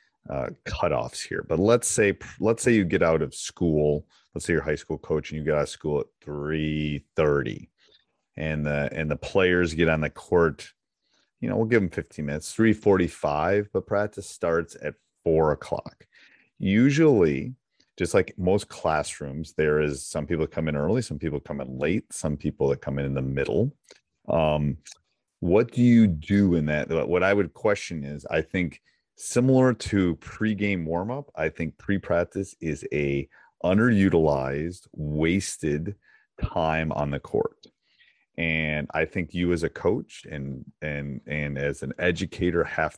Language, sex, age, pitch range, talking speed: English, male, 30-49, 75-95 Hz, 170 wpm